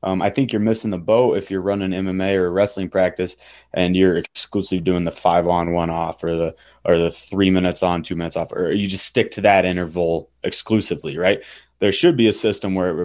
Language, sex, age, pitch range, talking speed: English, male, 20-39, 90-100 Hz, 215 wpm